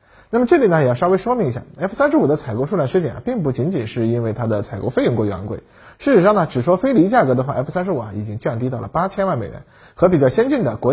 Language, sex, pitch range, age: Chinese, male, 115-175 Hz, 20-39